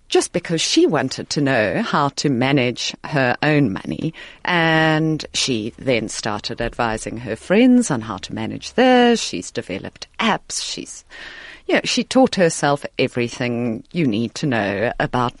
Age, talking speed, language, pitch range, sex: 40-59, 155 wpm, English, 120-180 Hz, female